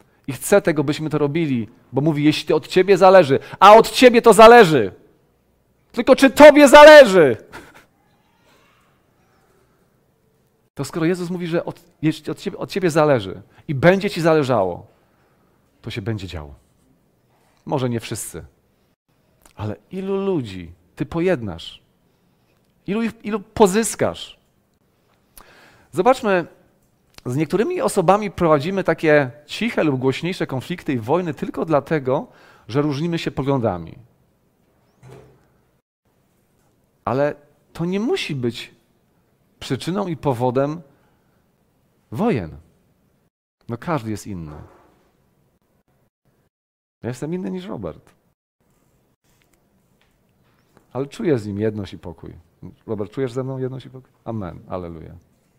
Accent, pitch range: native, 115-185 Hz